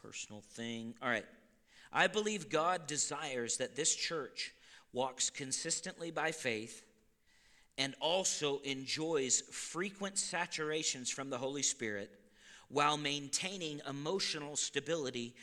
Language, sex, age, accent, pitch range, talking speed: English, male, 50-69, American, 120-195 Hz, 110 wpm